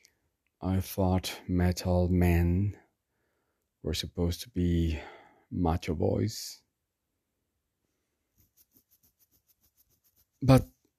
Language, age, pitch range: English, 40-59, 90-105 Hz